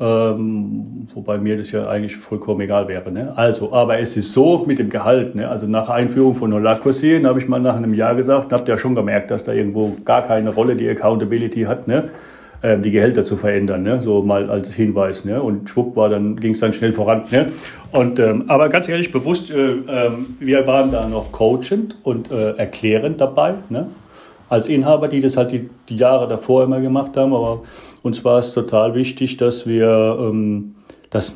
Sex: male